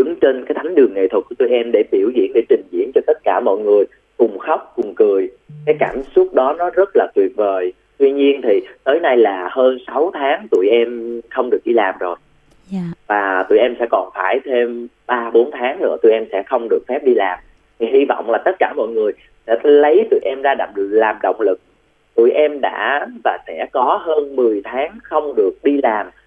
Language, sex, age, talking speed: Vietnamese, male, 20-39, 225 wpm